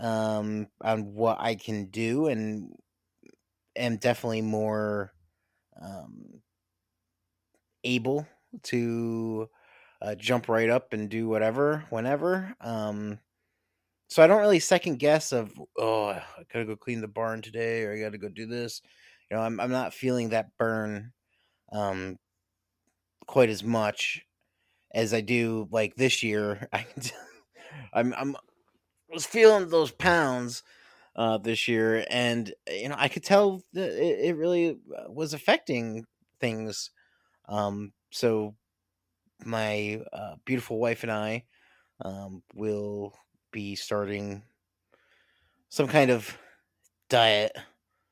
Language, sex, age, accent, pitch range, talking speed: English, male, 30-49, American, 105-120 Hz, 125 wpm